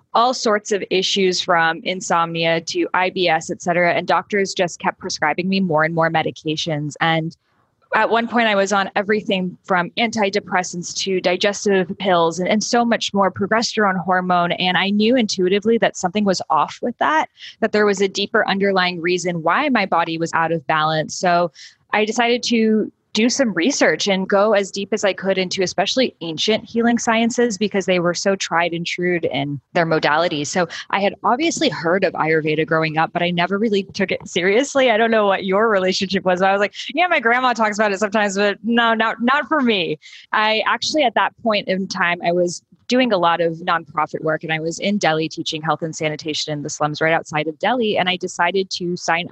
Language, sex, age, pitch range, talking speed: English, female, 20-39, 170-210 Hz, 205 wpm